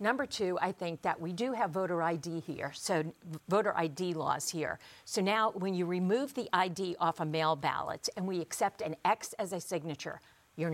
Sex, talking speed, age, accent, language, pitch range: female, 200 wpm, 50-69, American, English, 165-210 Hz